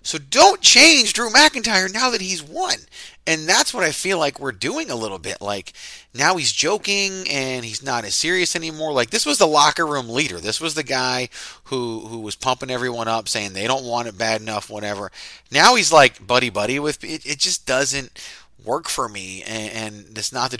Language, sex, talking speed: English, male, 210 wpm